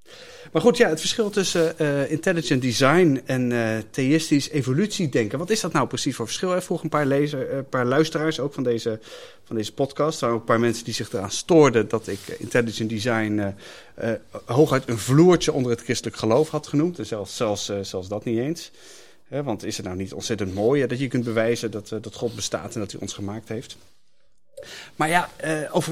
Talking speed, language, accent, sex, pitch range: 195 wpm, Dutch, Dutch, male, 110-145 Hz